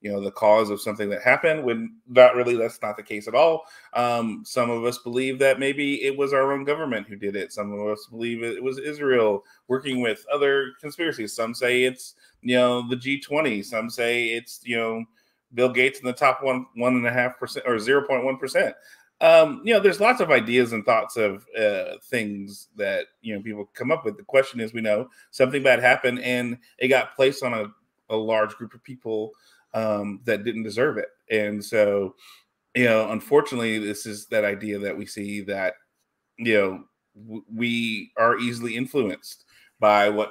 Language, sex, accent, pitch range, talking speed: English, male, American, 110-130 Hz, 195 wpm